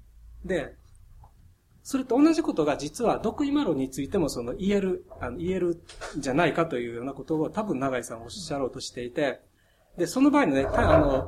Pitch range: 115-195 Hz